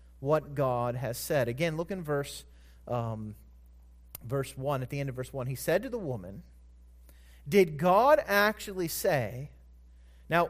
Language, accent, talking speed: English, American, 155 wpm